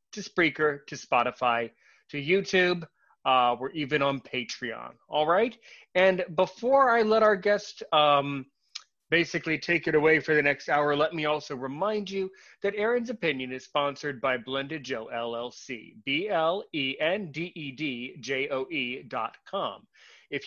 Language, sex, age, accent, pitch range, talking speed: English, male, 30-49, American, 135-185 Hz, 130 wpm